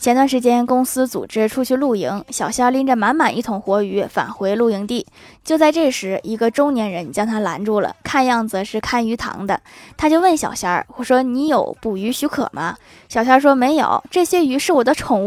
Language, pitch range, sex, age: Chinese, 215-270 Hz, female, 10-29